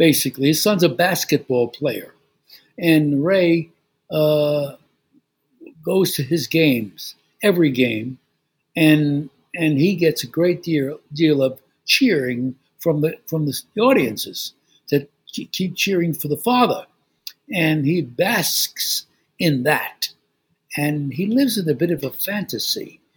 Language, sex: English, male